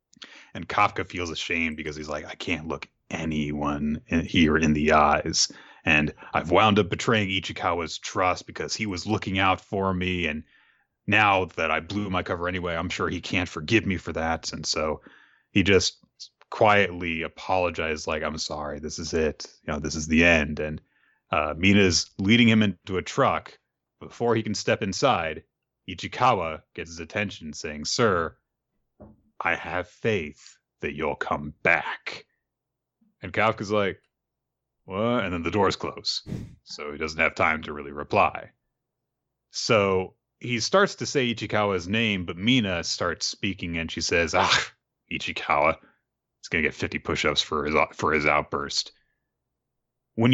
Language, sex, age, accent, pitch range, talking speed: English, male, 30-49, American, 80-110 Hz, 160 wpm